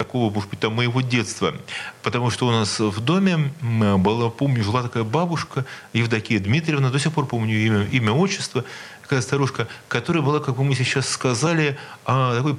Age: 40-59